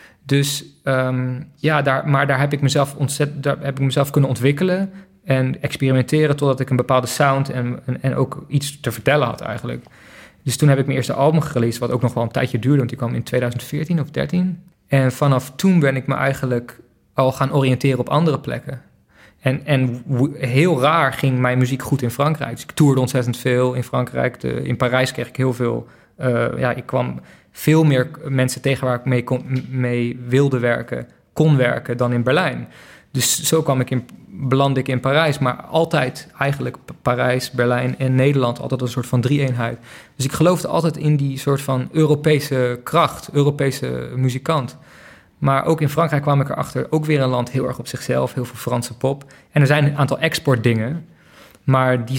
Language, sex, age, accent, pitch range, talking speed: Dutch, male, 20-39, Dutch, 125-145 Hz, 200 wpm